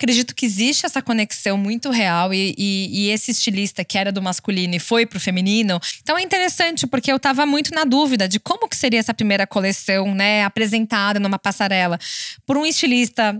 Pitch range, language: 195-255 Hz, Portuguese